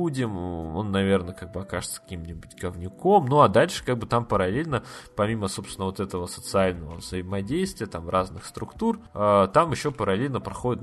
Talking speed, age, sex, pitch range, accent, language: 150 wpm, 20-39, male, 95-110 Hz, native, Russian